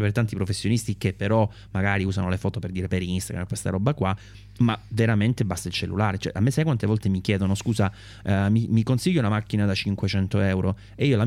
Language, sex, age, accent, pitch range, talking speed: English, male, 30-49, Italian, 95-115 Hz, 215 wpm